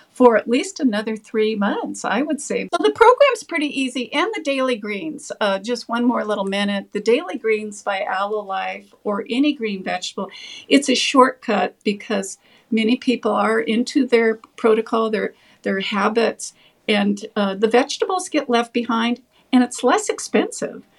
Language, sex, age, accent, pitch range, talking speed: English, female, 50-69, American, 200-250 Hz, 165 wpm